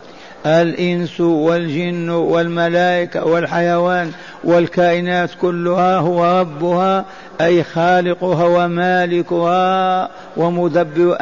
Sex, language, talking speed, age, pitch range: male, Arabic, 65 wpm, 50-69, 165-180 Hz